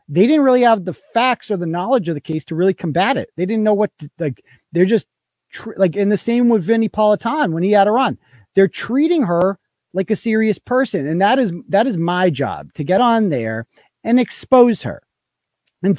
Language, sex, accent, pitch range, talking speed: English, male, American, 165-225 Hz, 215 wpm